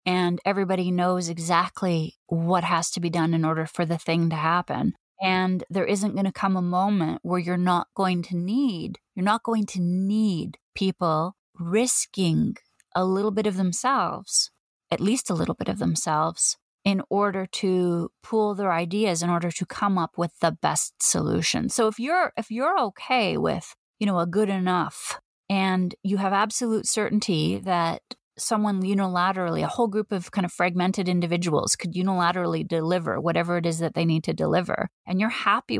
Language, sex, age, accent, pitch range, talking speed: English, female, 30-49, American, 175-210 Hz, 180 wpm